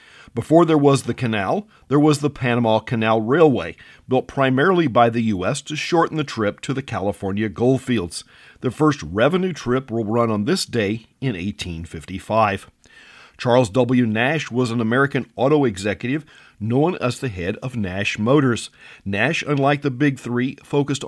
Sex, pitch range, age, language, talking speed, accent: male, 110-145 Hz, 50-69, English, 160 wpm, American